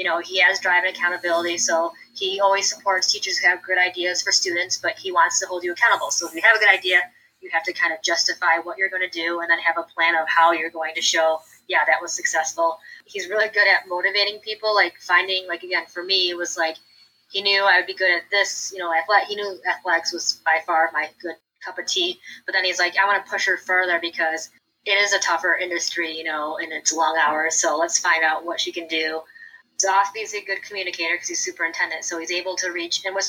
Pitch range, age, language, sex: 170-200 Hz, 20-39, English, female